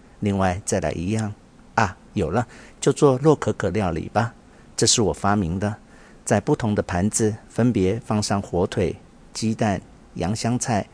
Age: 50-69